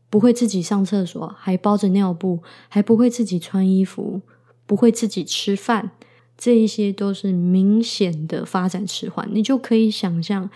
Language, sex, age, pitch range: Chinese, female, 20-39, 175-210 Hz